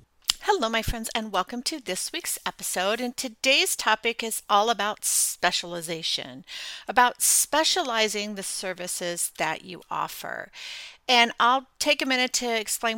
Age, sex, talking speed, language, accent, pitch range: 40-59, female, 140 wpm, English, American, 200-255 Hz